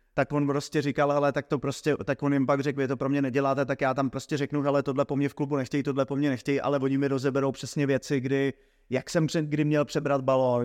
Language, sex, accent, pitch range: English, male, Czech, 130-140 Hz